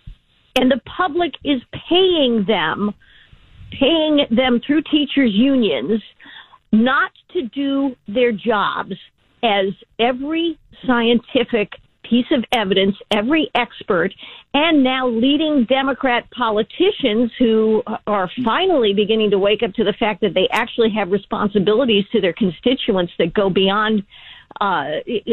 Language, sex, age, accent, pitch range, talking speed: English, female, 50-69, American, 210-270 Hz, 120 wpm